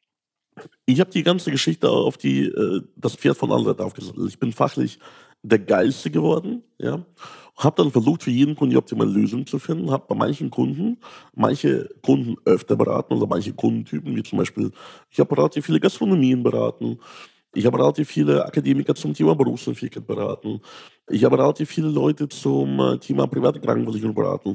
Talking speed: 170 wpm